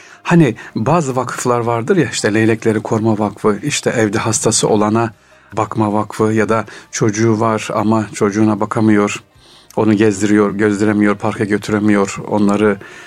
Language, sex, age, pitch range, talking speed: Turkish, male, 60-79, 105-125 Hz, 130 wpm